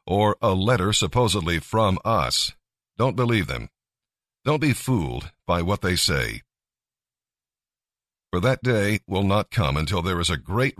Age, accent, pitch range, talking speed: 50-69, American, 90-115 Hz, 150 wpm